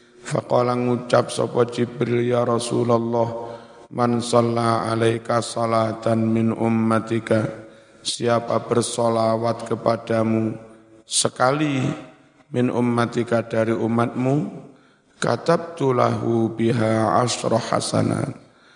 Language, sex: Indonesian, male